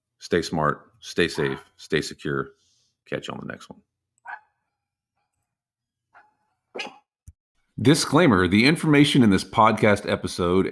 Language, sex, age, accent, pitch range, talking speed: English, male, 40-59, American, 95-115 Hz, 105 wpm